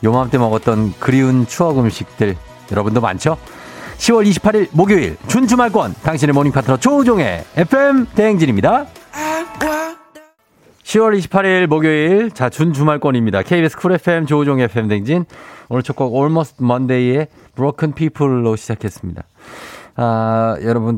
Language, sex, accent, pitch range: Korean, male, native, 105-150 Hz